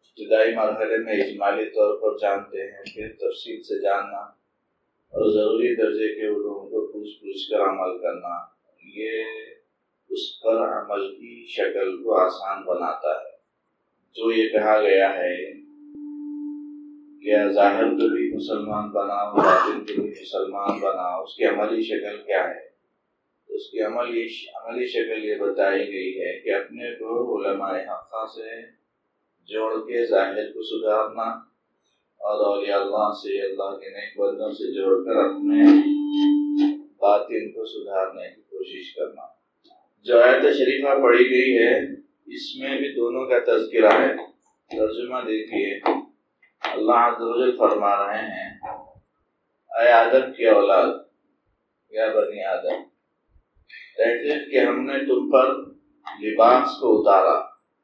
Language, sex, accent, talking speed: English, male, Indian, 110 wpm